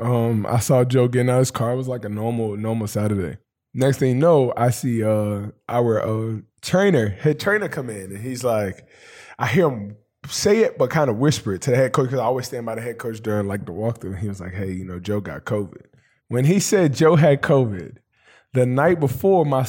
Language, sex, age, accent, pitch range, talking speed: English, male, 20-39, American, 115-150 Hz, 245 wpm